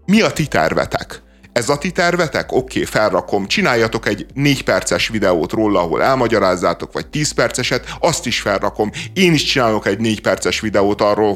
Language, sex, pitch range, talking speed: Hungarian, male, 120-155 Hz, 170 wpm